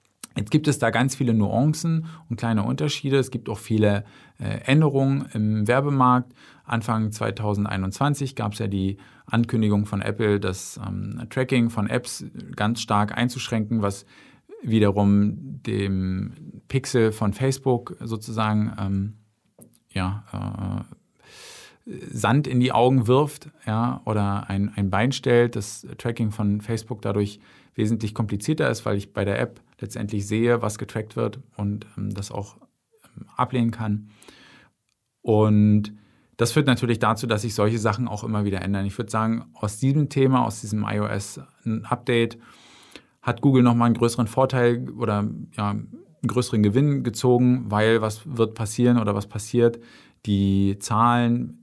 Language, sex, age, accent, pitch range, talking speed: German, male, 40-59, German, 105-120 Hz, 140 wpm